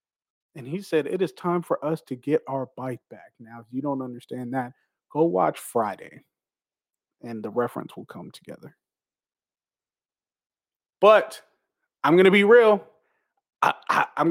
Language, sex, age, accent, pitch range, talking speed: English, male, 30-49, American, 155-215 Hz, 155 wpm